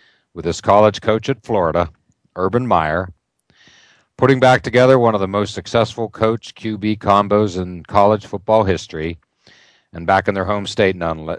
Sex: male